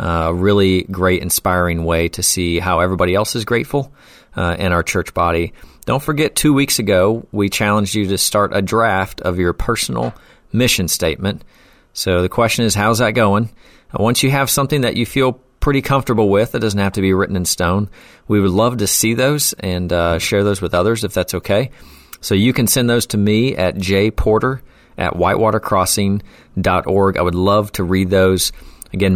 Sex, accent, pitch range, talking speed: male, American, 90-115 Hz, 190 wpm